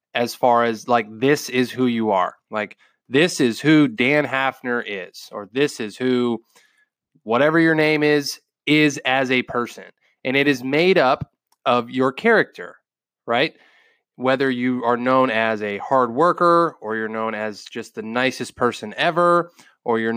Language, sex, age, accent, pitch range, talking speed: English, male, 20-39, American, 120-150 Hz, 165 wpm